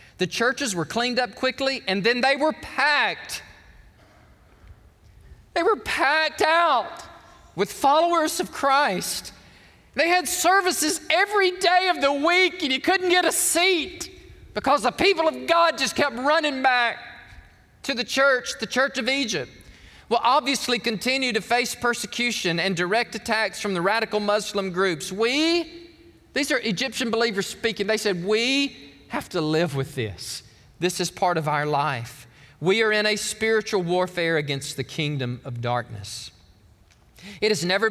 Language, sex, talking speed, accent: English, male, 155 wpm, American